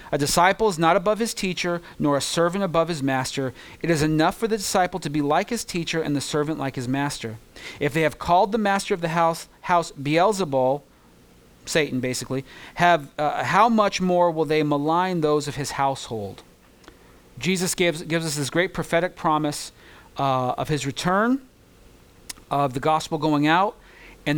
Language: English